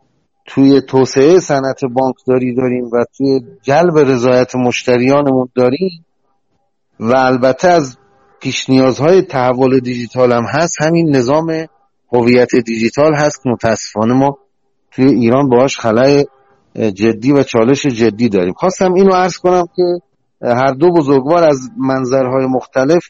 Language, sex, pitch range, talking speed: Persian, male, 130-165 Hz, 120 wpm